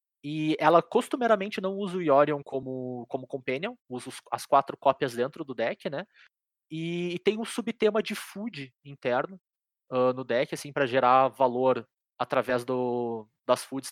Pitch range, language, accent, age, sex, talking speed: 135-175 Hz, Portuguese, Brazilian, 20-39, male, 160 wpm